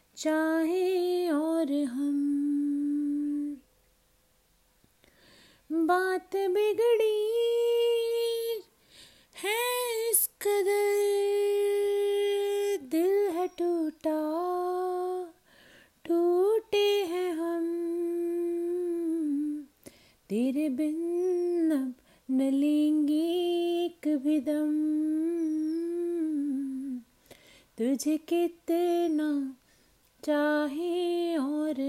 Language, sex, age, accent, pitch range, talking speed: Hindi, female, 30-49, native, 290-350 Hz, 40 wpm